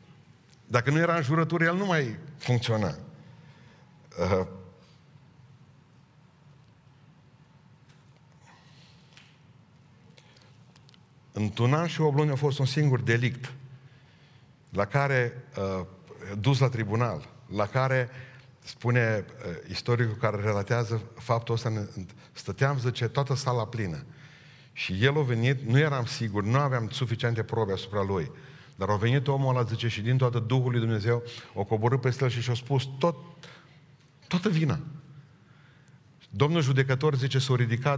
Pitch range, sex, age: 120-145 Hz, male, 50-69